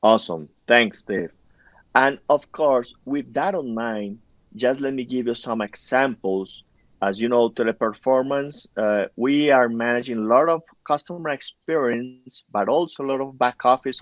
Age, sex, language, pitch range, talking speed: 50-69, male, English, 125-155 Hz, 160 wpm